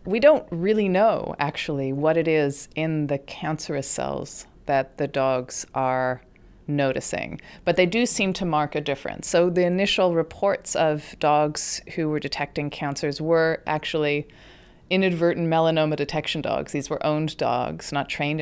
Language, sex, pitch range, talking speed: English, female, 135-160 Hz, 155 wpm